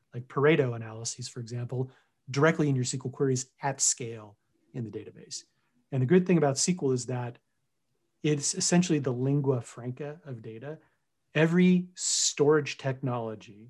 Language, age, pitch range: English, 30-49, 120-140 Hz